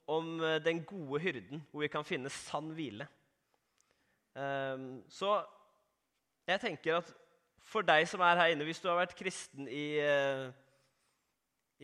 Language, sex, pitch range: English, male, 130-175 Hz